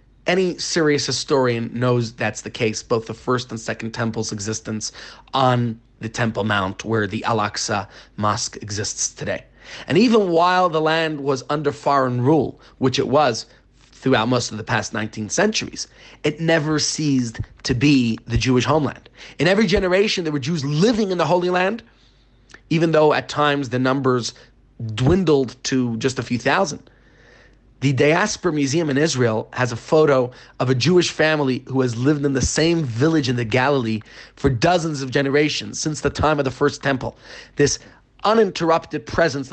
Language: English